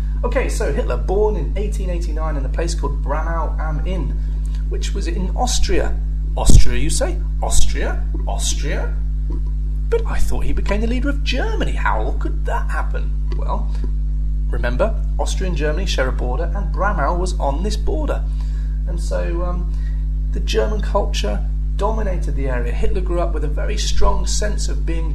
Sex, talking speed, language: male, 160 wpm, English